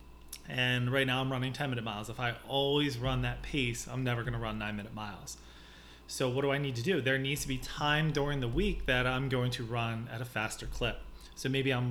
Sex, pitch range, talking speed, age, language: male, 120-145 Hz, 245 wpm, 30-49, English